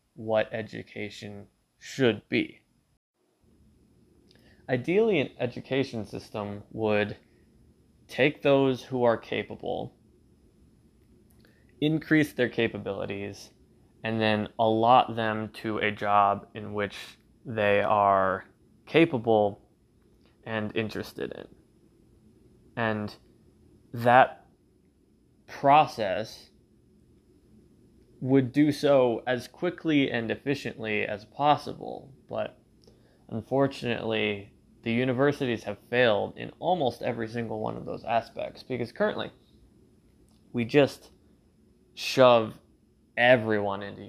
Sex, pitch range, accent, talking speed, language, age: male, 105-125 Hz, American, 90 wpm, English, 20-39